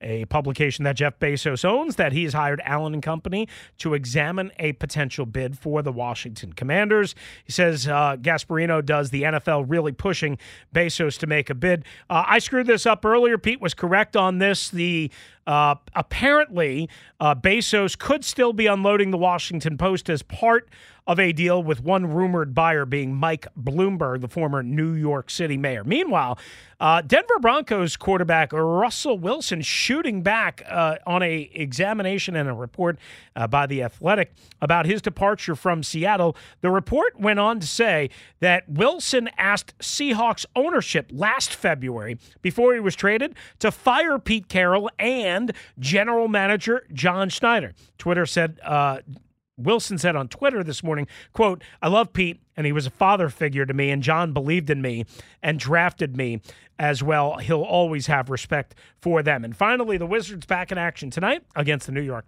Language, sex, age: English, male, 40-59